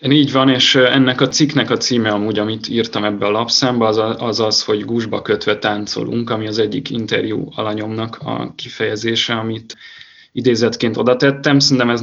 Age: 20-39